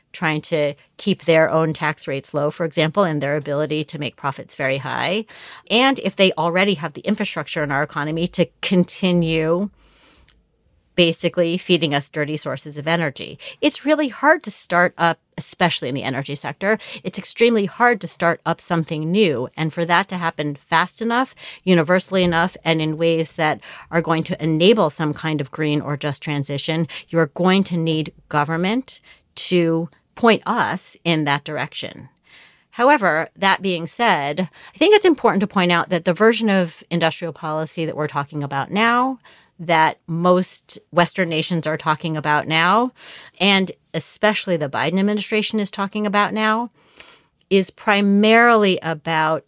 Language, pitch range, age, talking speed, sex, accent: English, 155-195 Hz, 30-49, 160 wpm, female, American